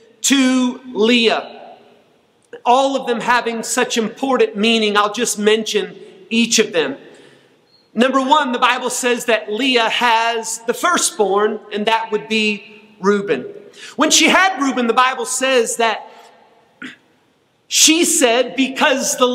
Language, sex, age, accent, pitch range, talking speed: English, male, 40-59, American, 220-270 Hz, 130 wpm